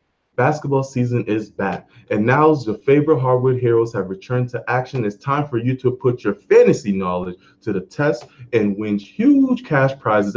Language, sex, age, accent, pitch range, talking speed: English, male, 20-39, American, 105-150 Hz, 185 wpm